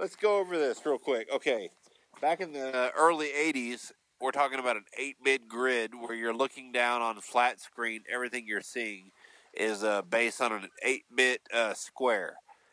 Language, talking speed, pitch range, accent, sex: English, 175 wpm, 115-145 Hz, American, male